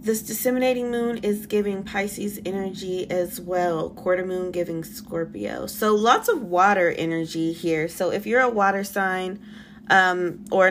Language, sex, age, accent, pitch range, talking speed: English, female, 20-39, American, 180-215 Hz, 150 wpm